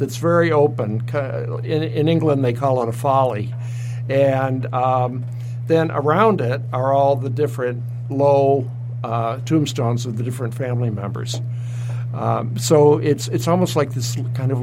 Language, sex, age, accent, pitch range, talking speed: English, male, 60-79, American, 120-135 Hz, 150 wpm